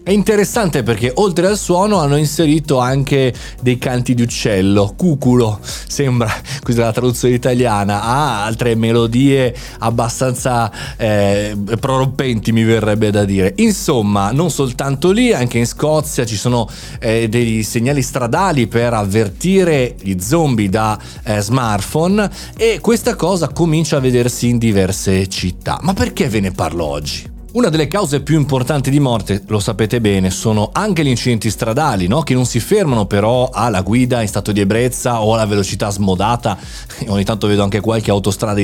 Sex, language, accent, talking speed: male, Italian, native, 160 wpm